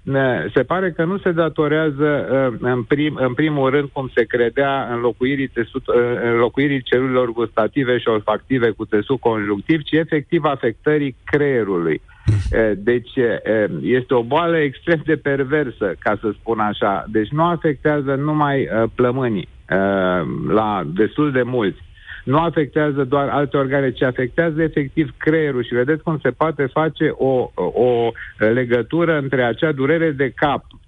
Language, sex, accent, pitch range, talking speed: Romanian, male, native, 120-150 Hz, 140 wpm